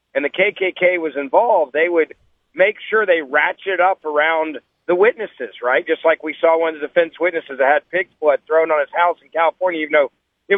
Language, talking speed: English, 220 wpm